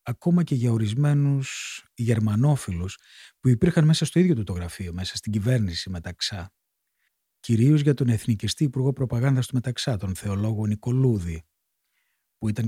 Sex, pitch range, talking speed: male, 100-135 Hz, 140 wpm